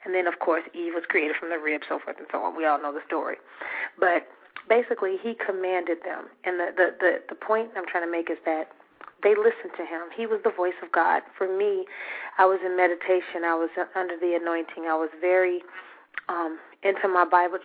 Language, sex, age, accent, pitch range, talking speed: English, female, 30-49, American, 180-215 Hz, 220 wpm